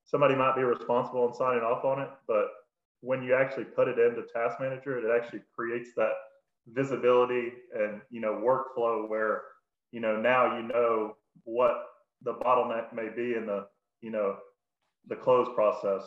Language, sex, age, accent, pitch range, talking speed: English, male, 20-39, American, 115-135 Hz, 170 wpm